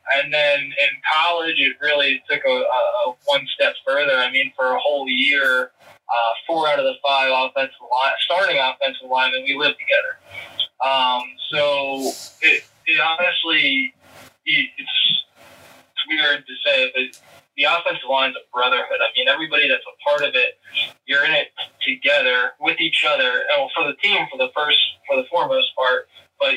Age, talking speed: 20-39, 170 wpm